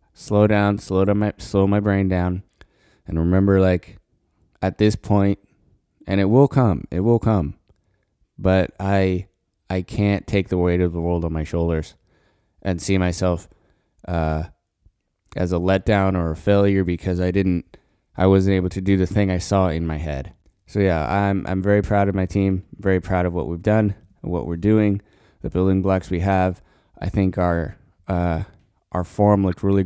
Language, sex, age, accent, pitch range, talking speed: English, male, 20-39, American, 90-100 Hz, 185 wpm